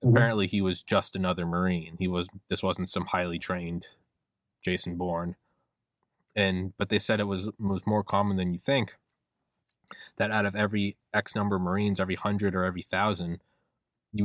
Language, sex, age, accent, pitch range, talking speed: English, male, 20-39, American, 95-120 Hz, 175 wpm